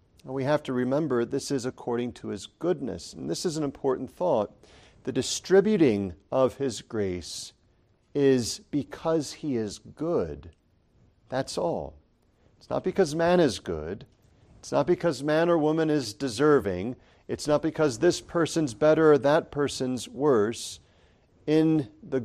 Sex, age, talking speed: male, 50-69, 145 wpm